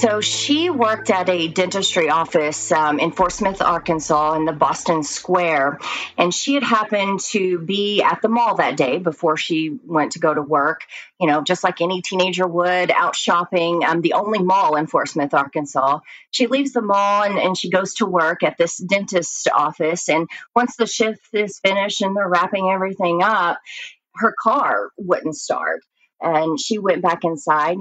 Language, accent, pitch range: English, American, 160-195 Hz